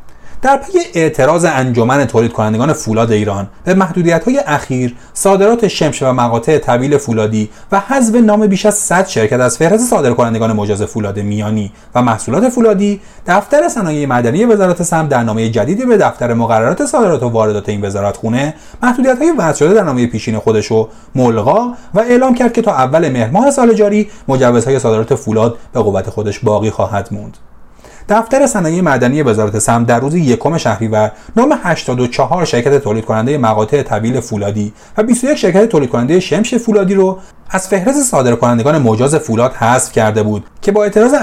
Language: Persian